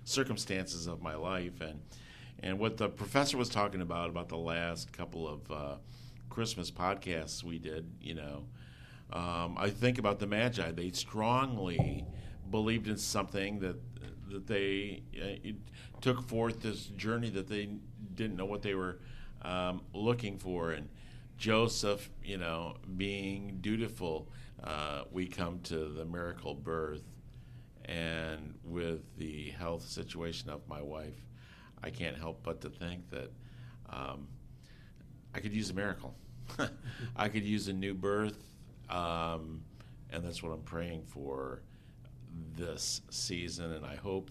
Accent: American